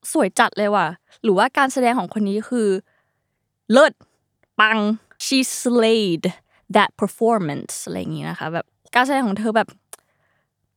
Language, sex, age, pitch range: Thai, female, 20-39, 195-260 Hz